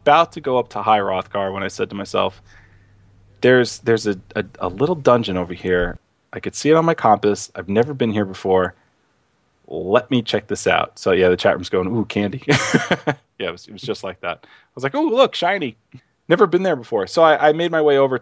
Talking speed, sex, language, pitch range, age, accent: 230 wpm, male, English, 95-135 Hz, 20-39, American